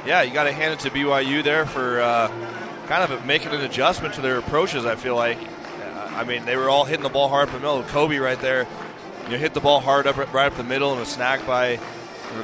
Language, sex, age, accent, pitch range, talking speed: English, male, 20-39, American, 115-135 Hz, 270 wpm